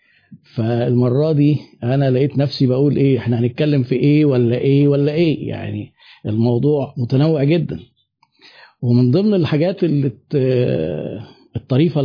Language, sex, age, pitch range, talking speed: Arabic, male, 50-69, 125-150 Hz, 115 wpm